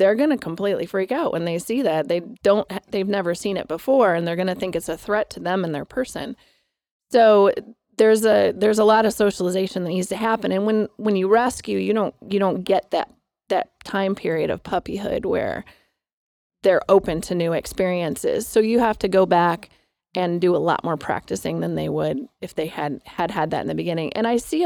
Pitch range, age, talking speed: 175-210 Hz, 30-49, 215 wpm